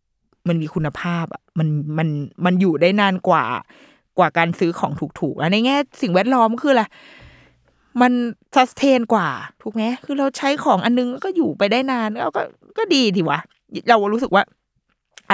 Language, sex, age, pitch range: Thai, female, 20-39, 165-230 Hz